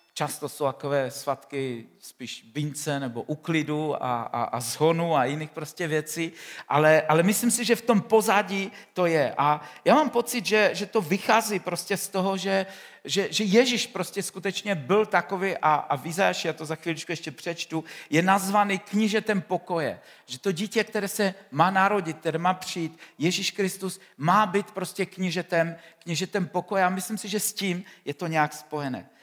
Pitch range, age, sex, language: 155-190 Hz, 50-69, male, Czech